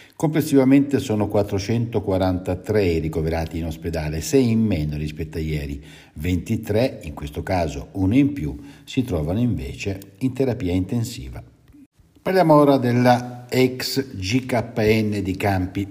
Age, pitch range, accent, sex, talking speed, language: 60-79, 90-125 Hz, native, male, 120 wpm, Italian